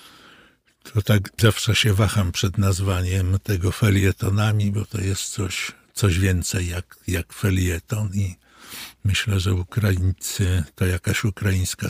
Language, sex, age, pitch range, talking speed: Polish, male, 60-79, 95-110 Hz, 125 wpm